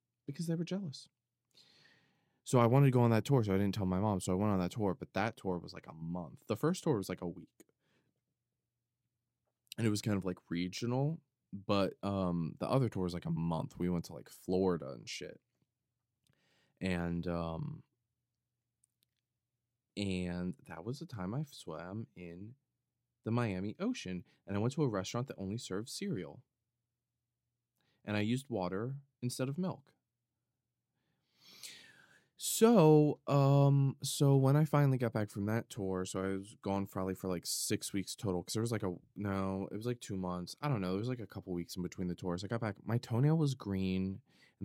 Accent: American